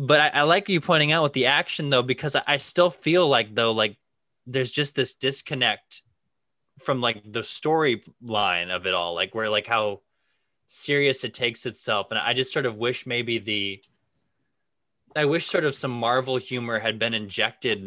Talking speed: 190 wpm